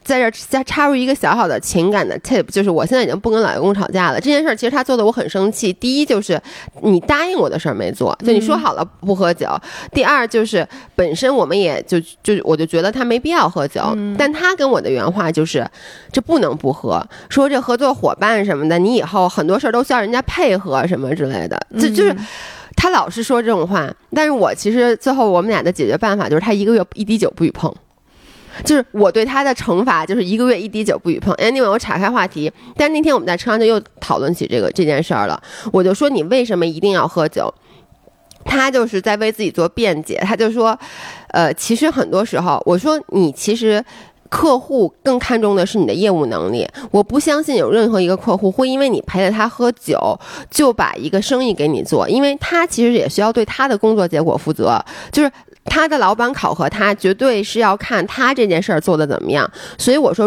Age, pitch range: 20-39, 195-260 Hz